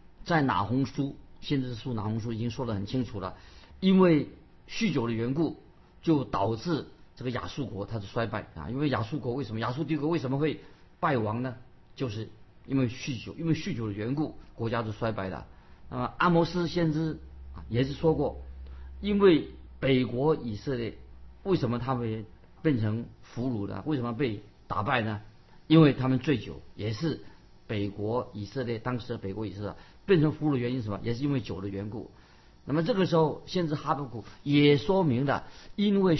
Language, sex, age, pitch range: Chinese, male, 50-69, 105-145 Hz